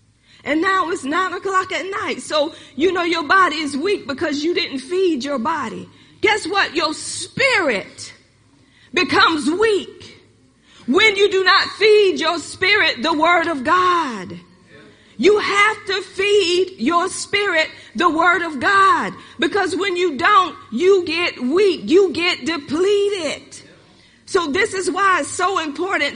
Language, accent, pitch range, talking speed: English, American, 300-380 Hz, 145 wpm